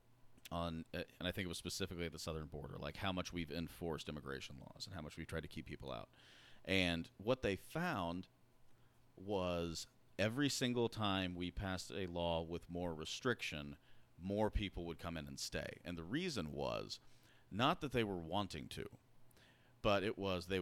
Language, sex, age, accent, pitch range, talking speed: English, male, 40-59, American, 85-115 Hz, 185 wpm